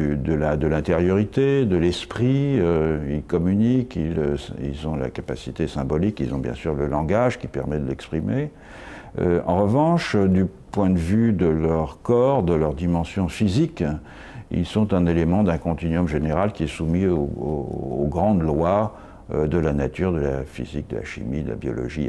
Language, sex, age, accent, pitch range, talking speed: French, male, 60-79, French, 80-105 Hz, 175 wpm